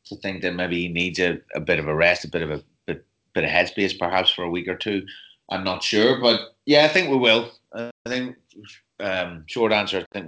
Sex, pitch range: male, 85-100 Hz